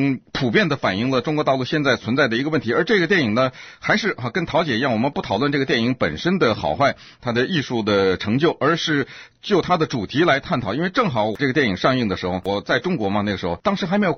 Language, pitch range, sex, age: Chinese, 105-165 Hz, male, 50-69